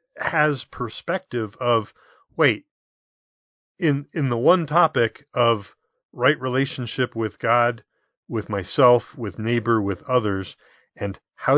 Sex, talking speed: male, 115 wpm